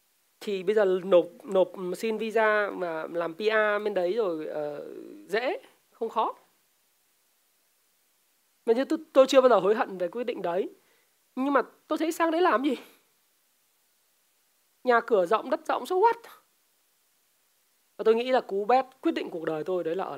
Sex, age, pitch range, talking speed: male, 20-39, 200-305 Hz, 175 wpm